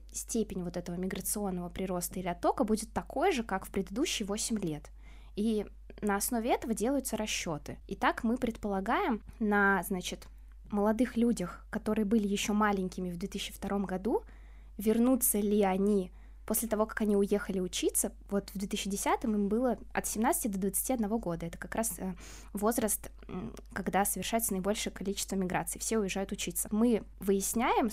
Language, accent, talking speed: Russian, native, 145 wpm